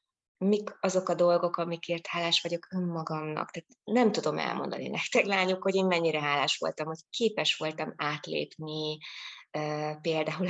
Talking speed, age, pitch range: 145 wpm, 20-39, 160-190 Hz